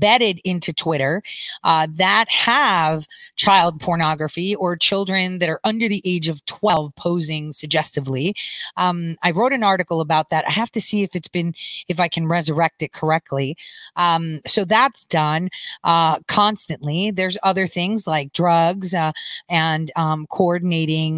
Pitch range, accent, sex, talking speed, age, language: 160-220 Hz, American, female, 155 wpm, 30-49, English